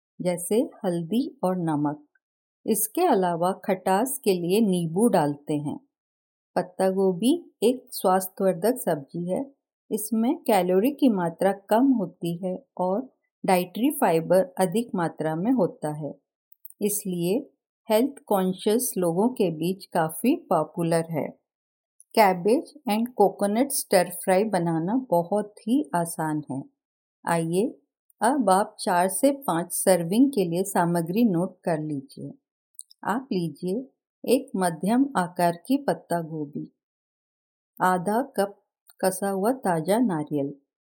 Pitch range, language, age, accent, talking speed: 175-230 Hz, Hindi, 50-69, native, 115 wpm